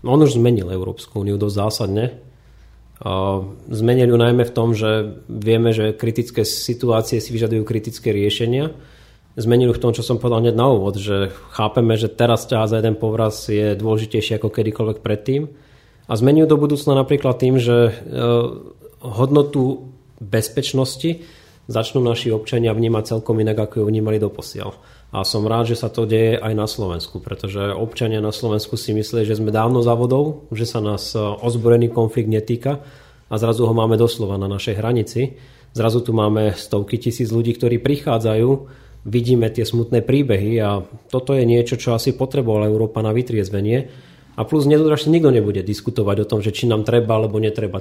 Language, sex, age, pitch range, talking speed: Slovak, male, 30-49, 110-120 Hz, 170 wpm